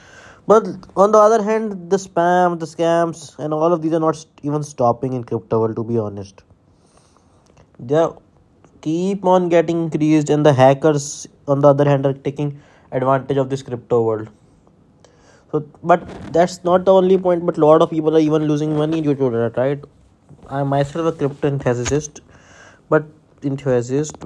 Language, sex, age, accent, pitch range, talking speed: English, male, 20-39, Indian, 125-155 Hz, 170 wpm